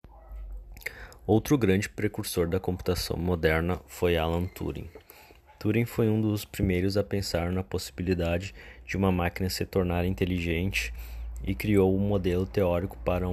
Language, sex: Portuguese, male